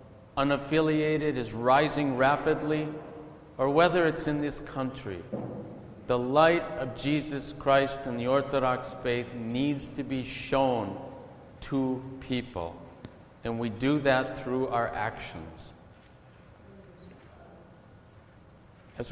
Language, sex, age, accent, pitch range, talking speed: English, male, 50-69, American, 115-150 Hz, 105 wpm